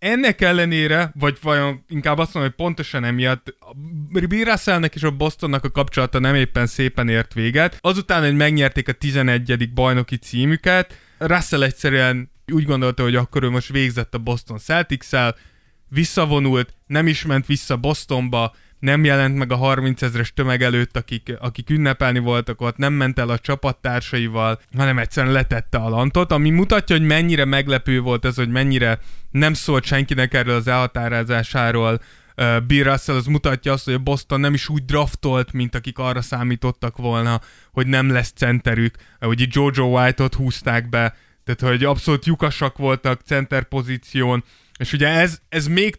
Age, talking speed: 20-39, 165 wpm